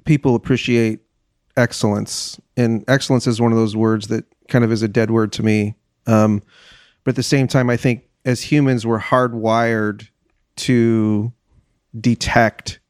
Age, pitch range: 40-59, 110-125 Hz